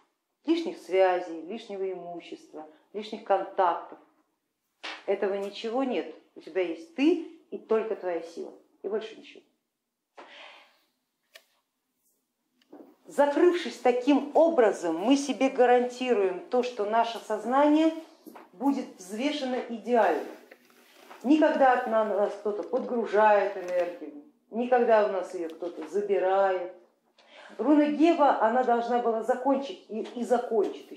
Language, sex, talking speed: Russian, female, 105 wpm